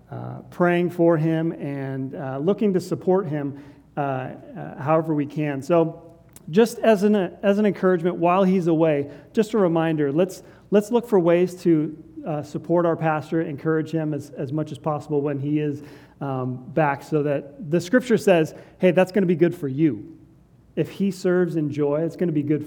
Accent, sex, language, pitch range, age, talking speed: American, male, English, 145-180 Hz, 40-59, 195 wpm